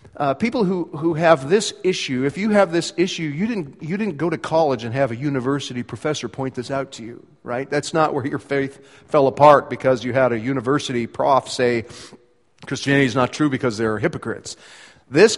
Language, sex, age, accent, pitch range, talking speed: English, male, 40-59, American, 125-165 Hz, 205 wpm